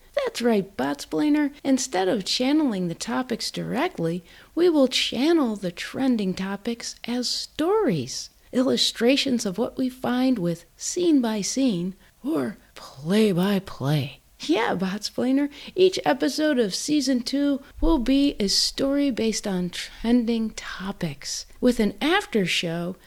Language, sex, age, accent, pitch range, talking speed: English, female, 40-59, American, 195-285 Hz, 120 wpm